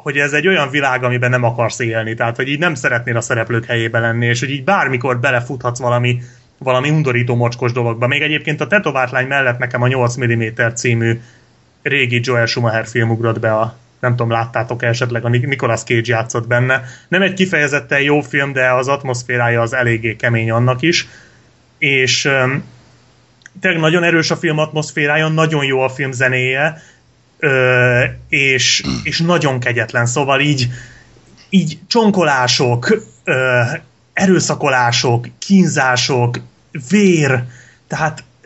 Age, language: 30-49, Hungarian